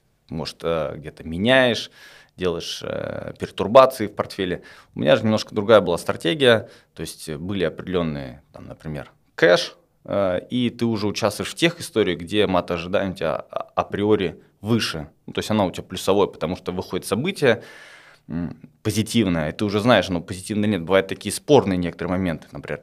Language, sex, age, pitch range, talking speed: Russian, male, 20-39, 85-110 Hz, 155 wpm